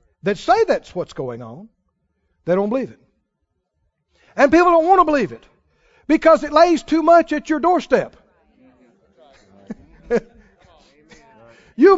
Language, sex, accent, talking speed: English, male, American, 130 wpm